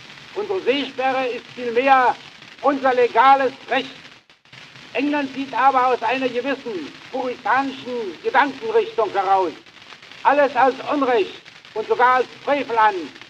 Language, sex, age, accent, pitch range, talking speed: German, male, 70-89, German, 240-280 Hz, 110 wpm